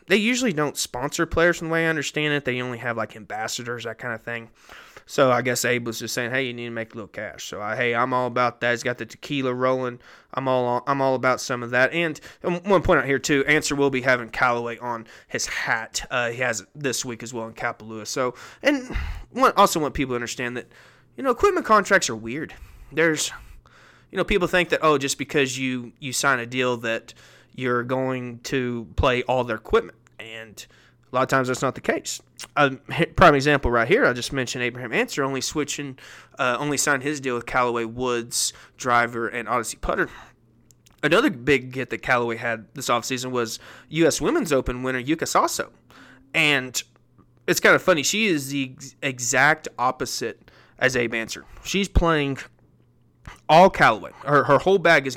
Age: 20-39